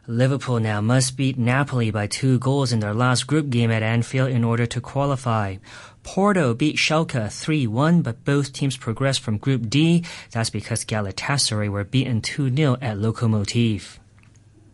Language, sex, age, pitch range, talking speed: English, male, 30-49, 115-145 Hz, 155 wpm